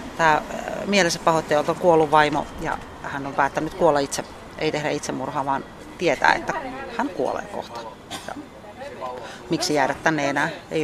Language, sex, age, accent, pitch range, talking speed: Finnish, female, 30-49, native, 145-175 Hz, 145 wpm